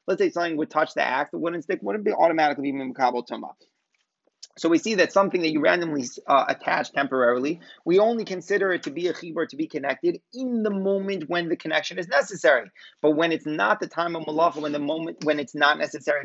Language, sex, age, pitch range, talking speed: English, male, 30-49, 150-200 Hz, 220 wpm